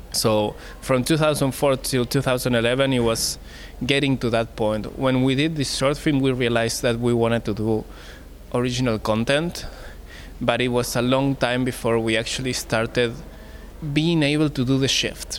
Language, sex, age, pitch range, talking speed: English, male, 20-39, 110-130 Hz, 165 wpm